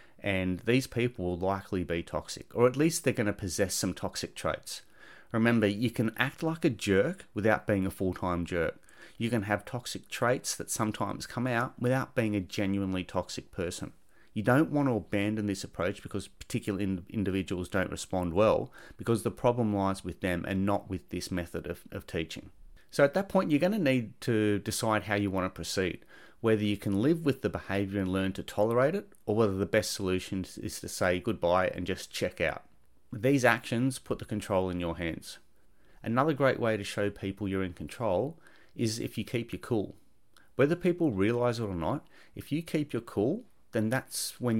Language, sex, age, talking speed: English, male, 30-49, 195 wpm